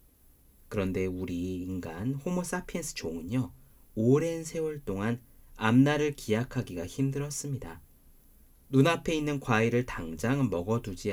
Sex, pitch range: male, 85-135 Hz